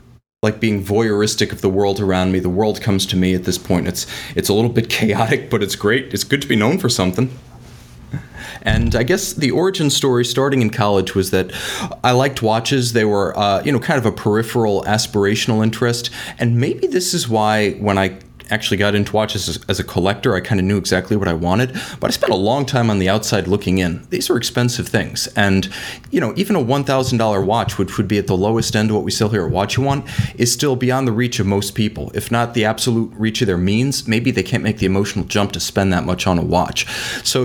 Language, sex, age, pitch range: English, male, 30-49, 95-120 Hz